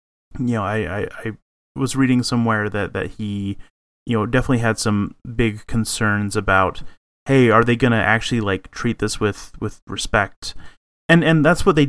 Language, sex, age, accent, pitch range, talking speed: English, male, 30-49, American, 95-125 Hz, 180 wpm